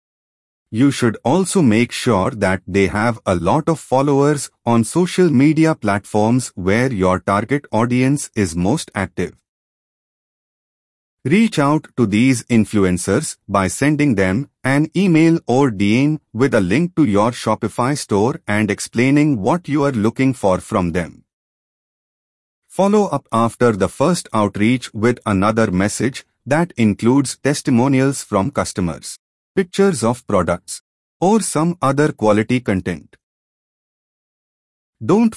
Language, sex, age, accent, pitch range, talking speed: English, male, 30-49, Indian, 105-145 Hz, 125 wpm